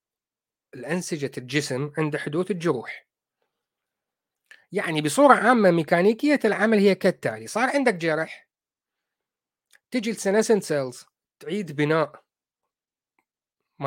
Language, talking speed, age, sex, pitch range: Arabic, 90 wpm, 30-49, male, 140-205 Hz